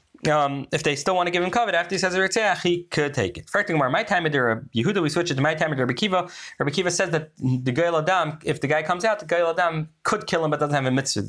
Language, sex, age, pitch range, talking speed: English, male, 20-39, 130-170 Hz, 290 wpm